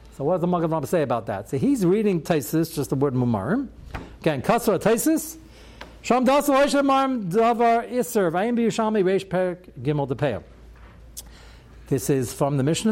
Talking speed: 110 wpm